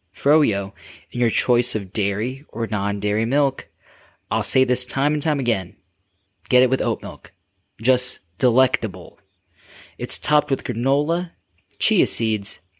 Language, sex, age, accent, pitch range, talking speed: English, male, 20-39, American, 110-155 Hz, 135 wpm